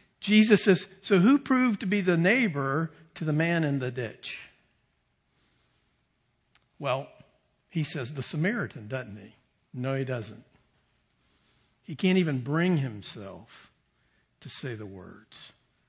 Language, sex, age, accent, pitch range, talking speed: English, male, 50-69, American, 130-185 Hz, 130 wpm